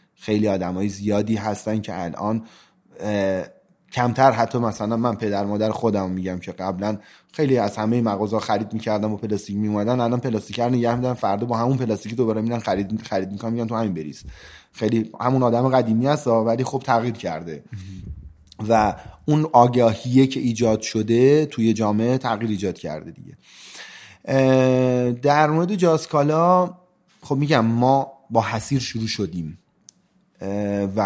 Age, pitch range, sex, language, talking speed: 30-49, 105-130 Hz, male, Persian, 145 wpm